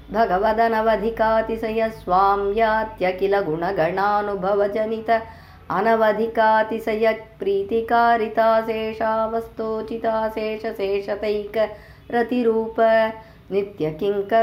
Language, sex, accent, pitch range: Tamil, male, native, 225-255 Hz